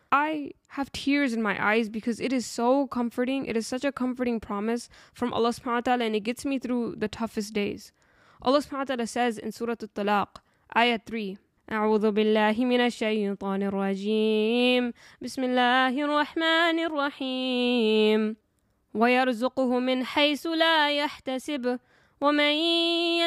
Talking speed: 160 wpm